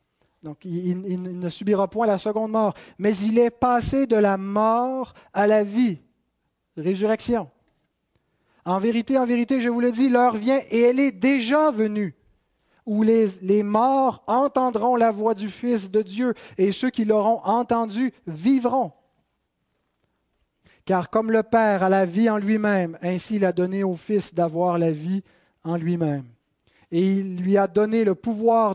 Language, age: French, 30-49